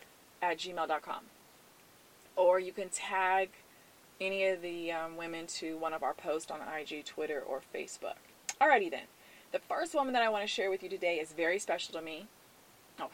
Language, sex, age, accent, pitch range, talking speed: English, female, 20-39, American, 160-210 Hz, 185 wpm